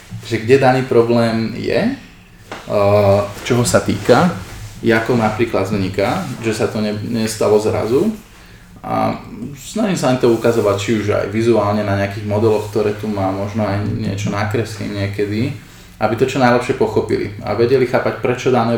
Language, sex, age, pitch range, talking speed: Slovak, male, 20-39, 105-115 Hz, 155 wpm